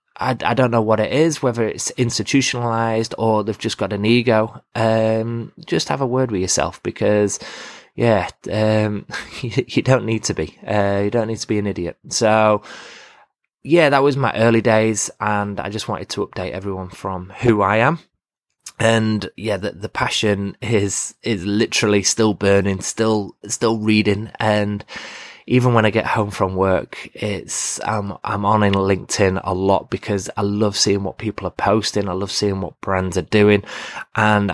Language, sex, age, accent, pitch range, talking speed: English, male, 20-39, British, 100-115 Hz, 180 wpm